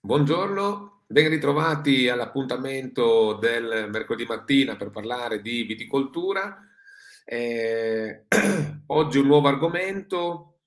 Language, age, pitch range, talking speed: Italian, 40-59, 110-150 Hz, 90 wpm